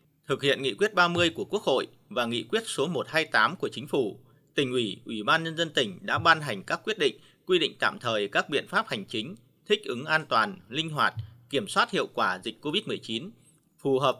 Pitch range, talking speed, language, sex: 130-175 Hz, 220 wpm, Vietnamese, male